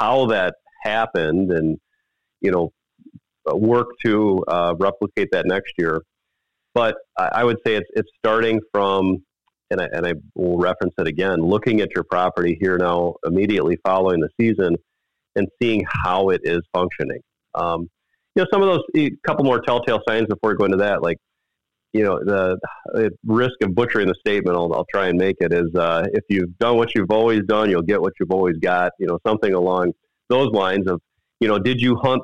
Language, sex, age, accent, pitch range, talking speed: English, male, 40-59, American, 90-110 Hz, 190 wpm